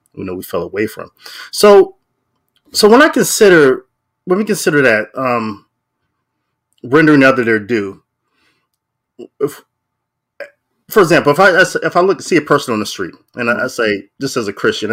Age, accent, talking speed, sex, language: 30-49, American, 170 wpm, male, English